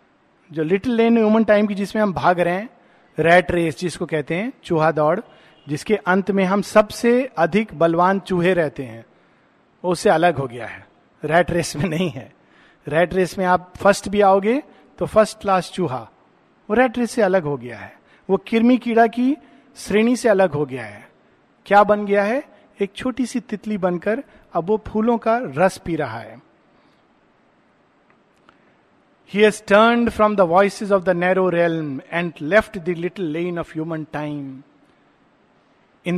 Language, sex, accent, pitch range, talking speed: Hindi, male, native, 165-215 Hz, 170 wpm